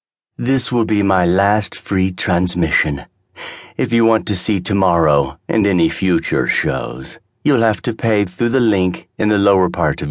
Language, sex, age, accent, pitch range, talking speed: English, male, 50-69, American, 85-110 Hz, 170 wpm